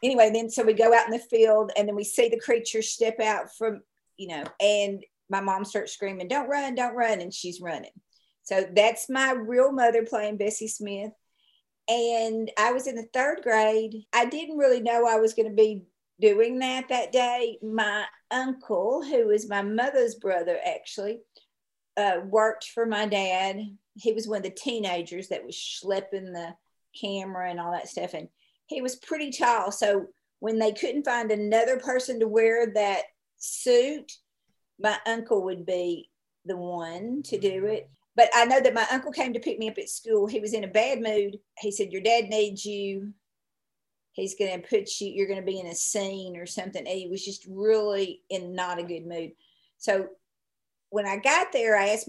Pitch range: 195-240 Hz